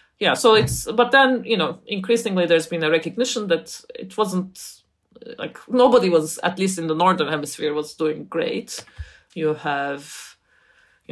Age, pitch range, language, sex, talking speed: 30-49, 155-210 Hz, English, female, 160 wpm